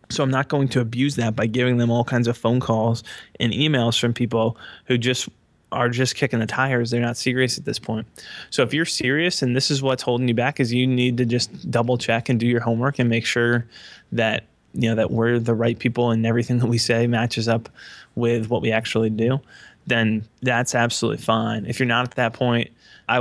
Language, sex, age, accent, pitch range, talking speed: English, male, 20-39, American, 115-125 Hz, 230 wpm